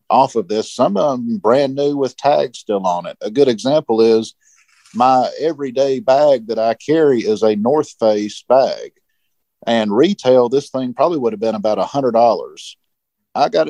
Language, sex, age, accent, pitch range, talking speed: English, male, 50-69, American, 110-135 Hz, 185 wpm